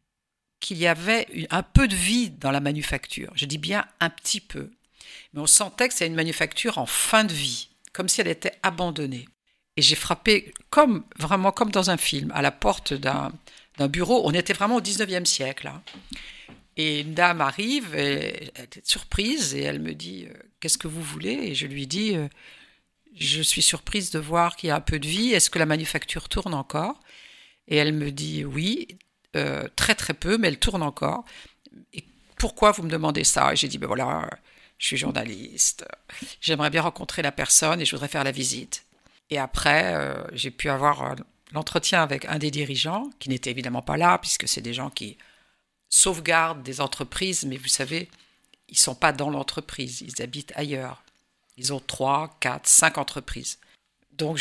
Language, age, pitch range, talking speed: French, 50-69, 140-185 Hz, 200 wpm